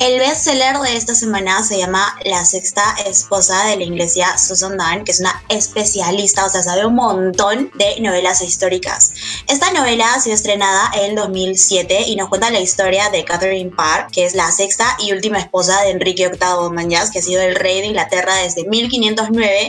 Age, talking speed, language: 20-39, 190 wpm, Spanish